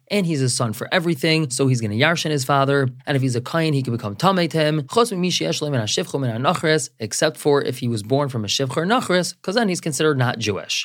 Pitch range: 125-160 Hz